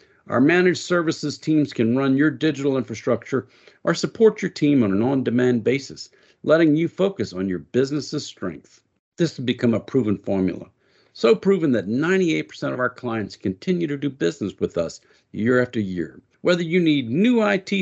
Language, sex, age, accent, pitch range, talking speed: English, male, 50-69, American, 115-175 Hz, 170 wpm